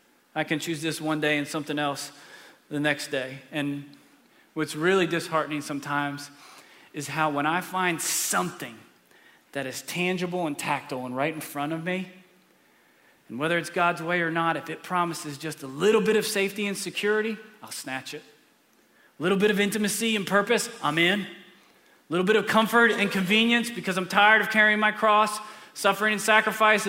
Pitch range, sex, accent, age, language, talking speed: 135-185 Hz, male, American, 30-49, English, 180 wpm